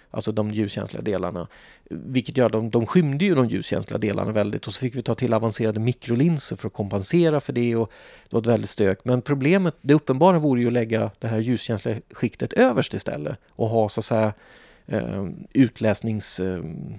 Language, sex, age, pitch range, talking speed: English, male, 30-49, 110-140 Hz, 185 wpm